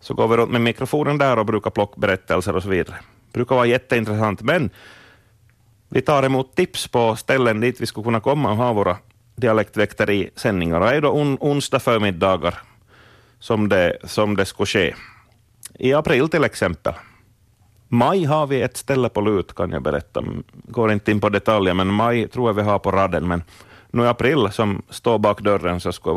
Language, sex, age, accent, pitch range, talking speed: Swedish, male, 30-49, Finnish, 105-125 Hz, 195 wpm